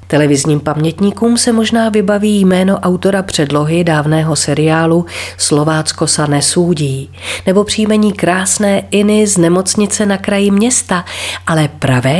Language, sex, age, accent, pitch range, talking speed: Czech, female, 40-59, native, 140-200 Hz, 120 wpm